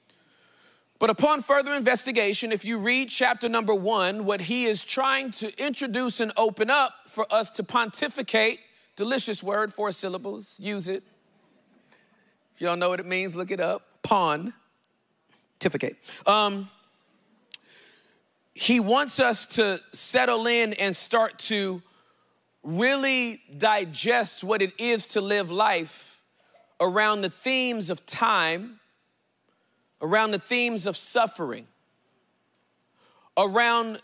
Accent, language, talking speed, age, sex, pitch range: American, English, 120 wpm, 40-59, male, 200-240 Hz